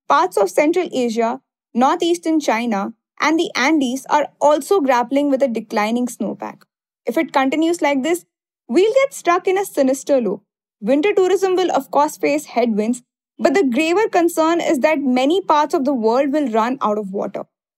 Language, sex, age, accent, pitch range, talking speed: English, female, 20-39, Indian, 255-340 Hz, 170 wpm